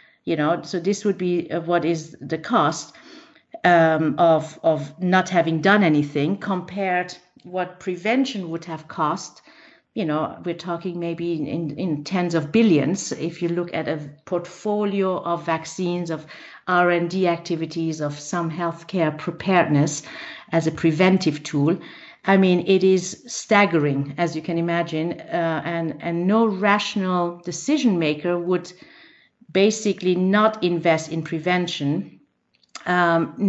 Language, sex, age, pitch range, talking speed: English, female, 50-69, 165-200 Hz, 135 wpm